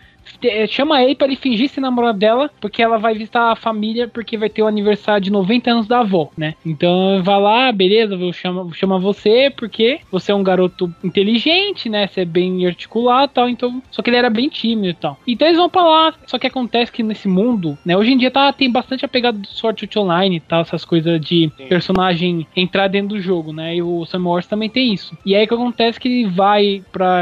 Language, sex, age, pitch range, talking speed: Portuguese, male, 20-39, 185-235 Hz, 235 wpm